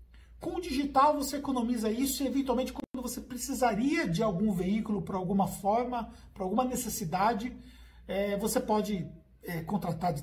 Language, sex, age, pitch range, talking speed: Portuguese, male, 50-69, 180-250 Hz, 155 wpm